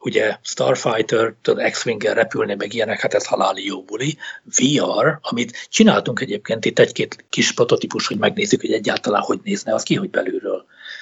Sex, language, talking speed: male, Hungarian, 160 wpm